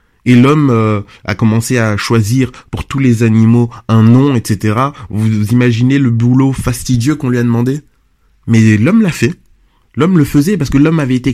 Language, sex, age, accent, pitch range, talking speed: French, male, 20-39, French, 115-140 Hz, 180 wpm